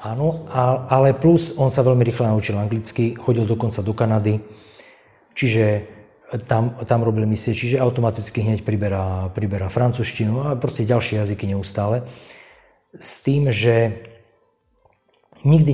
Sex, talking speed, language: male, 125 wpm, Slovak